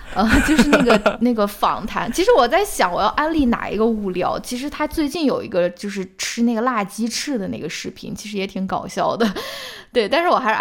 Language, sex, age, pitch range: Chinese, female, 20-39, 190-240 Hz